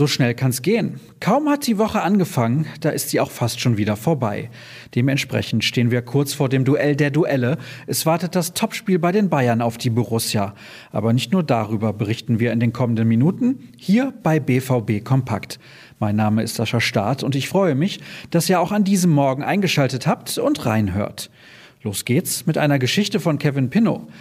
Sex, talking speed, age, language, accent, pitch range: male, 195 wpm, 40-59, German, German, 120-170 Hz